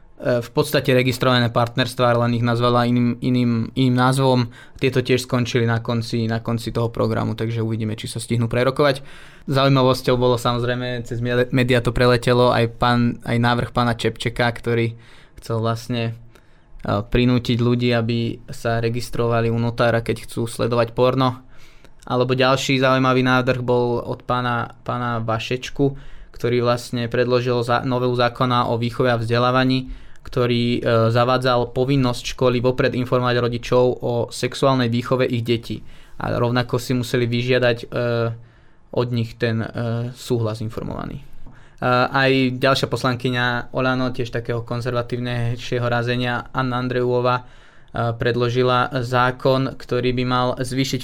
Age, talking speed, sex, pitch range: 20-39, 130 wpm, male, 120-130 Hz